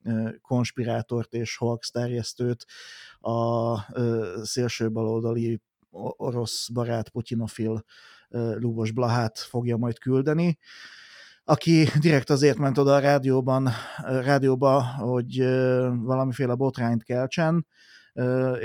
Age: 30-49